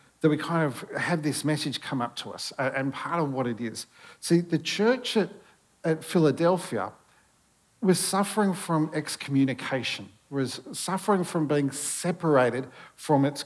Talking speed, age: 150 wpm, 50-69